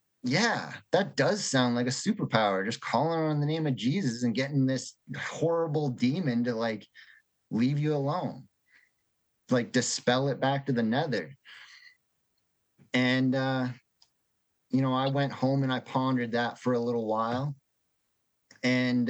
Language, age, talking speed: English, 30-49, 150 wpm